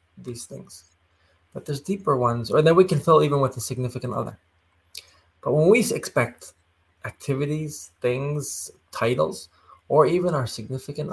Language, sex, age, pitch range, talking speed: English, male, 20-39, 90-145 Hz, 145 wpm